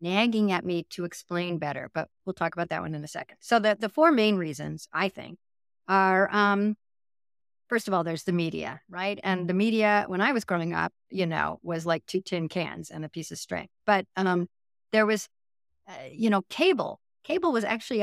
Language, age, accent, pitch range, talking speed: English, 50-69, American, 175-220 Hz, 210 wpm